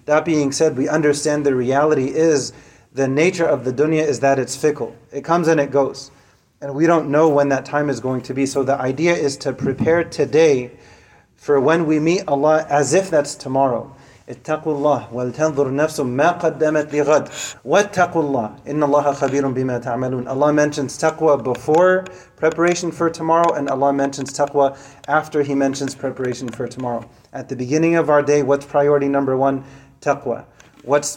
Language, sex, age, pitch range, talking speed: English, male, 30-49, 135-155 Hz, 170 wpm